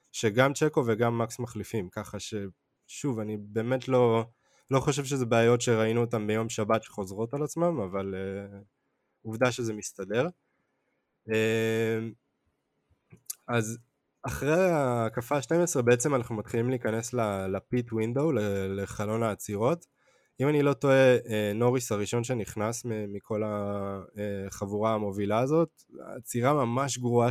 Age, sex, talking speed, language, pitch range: 20-39, male, 115 wpm, Hebrew, 105-125 Hz